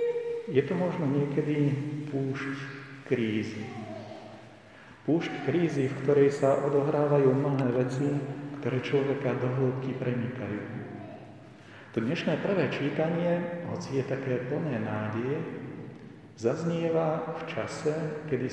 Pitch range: 120-145 Hz